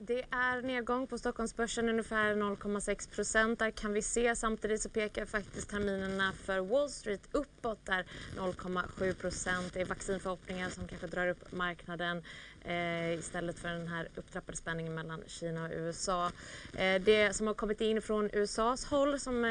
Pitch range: 185-225 Hz